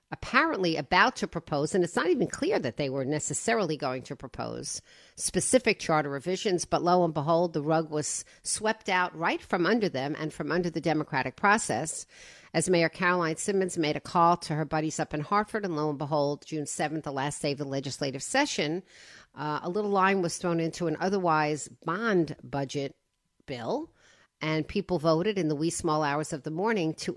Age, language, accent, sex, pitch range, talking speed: 50-69, English, American, female, 155-195 Hz, 195 wpm